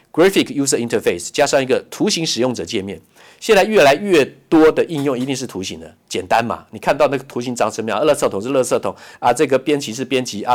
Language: Chinese